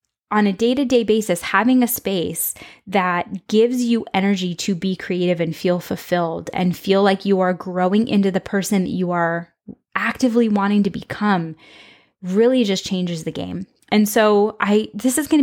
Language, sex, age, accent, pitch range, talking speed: English, female, 10-29, American, 185-235 Hz, 170 wpm